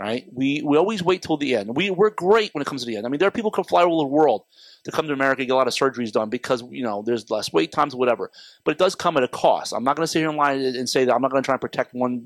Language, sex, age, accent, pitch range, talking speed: English, male, 30-49, American, 135-180 Hz, 350 wpm